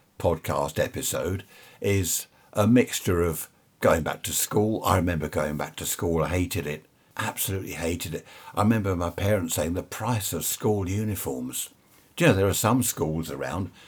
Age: 60-79